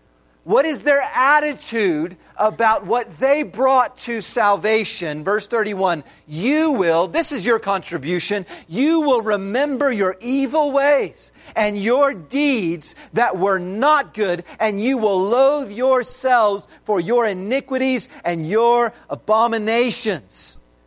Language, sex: English, male